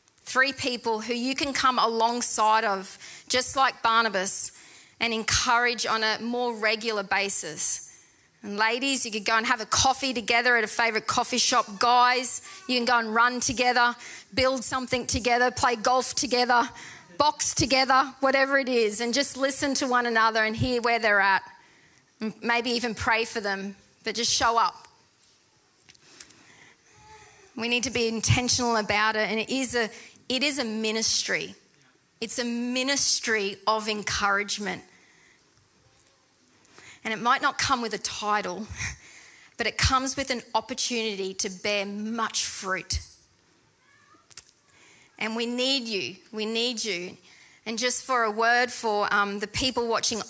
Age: 40-59